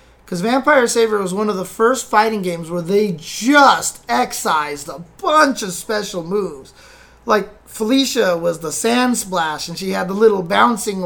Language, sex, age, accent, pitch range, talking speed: English, male, 20-39, American, 185-230 Hz, 170 wpm